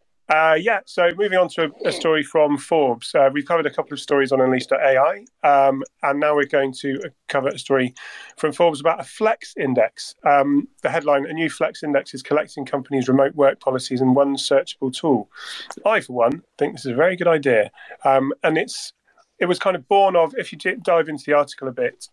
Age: 30-49